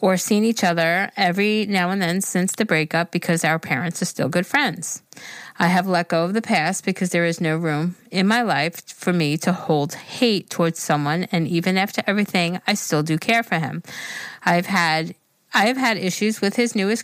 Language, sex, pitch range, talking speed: English, female, 165-205 Hz, 210 wpm